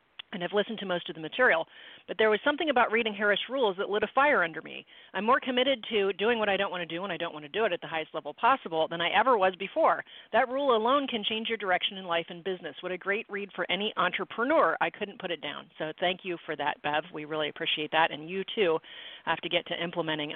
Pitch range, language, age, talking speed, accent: 170-220 Hz, English, 40-59, 270 wpm, American